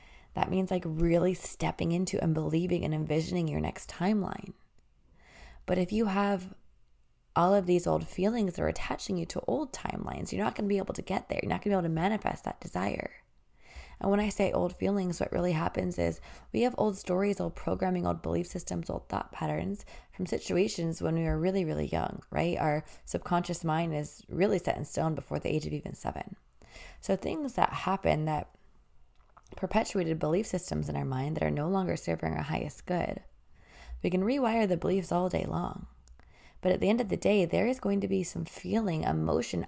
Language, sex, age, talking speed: English, female, 20-39, 205 wpm